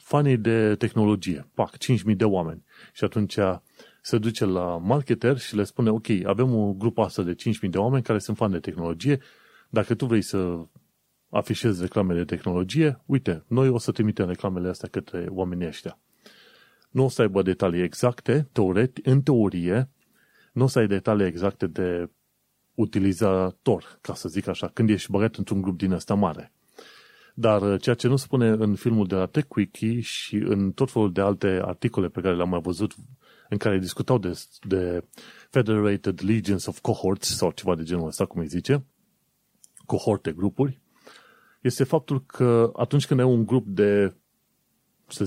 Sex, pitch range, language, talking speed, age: male, 95-120 Hz, Romanian, 170 wpm, 30-49